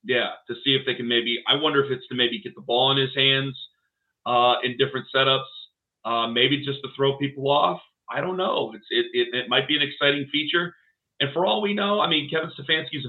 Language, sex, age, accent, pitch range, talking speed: English, male, 40-59, American, 125-150 Hz, 245 wpm